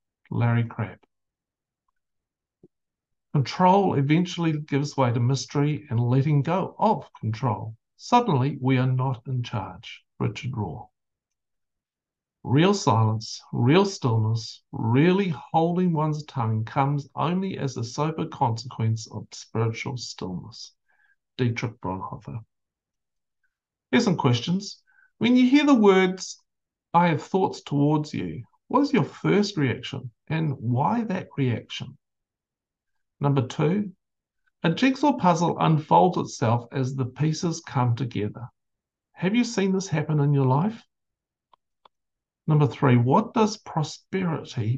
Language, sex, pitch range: English, male, 120-180 Hz